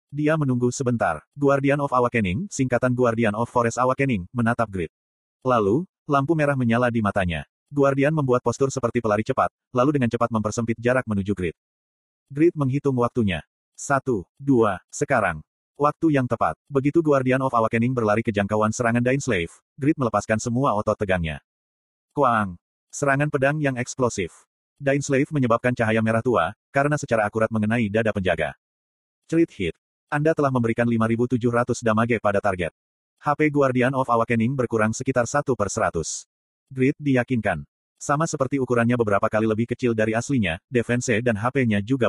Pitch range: 105-135 Hz